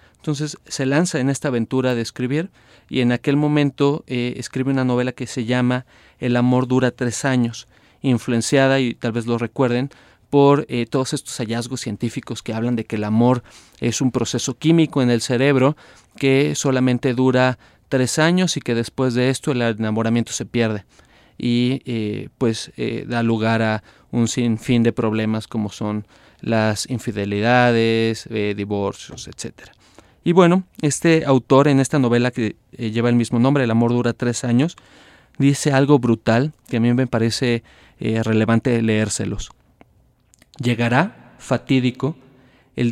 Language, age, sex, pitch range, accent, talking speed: Spanish, 30-49, male, 115-135 Hz, Mexican, 155 wpm